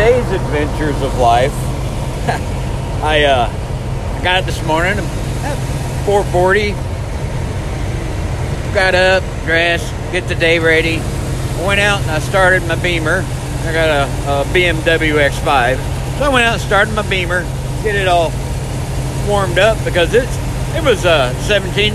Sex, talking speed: male, 140 wpm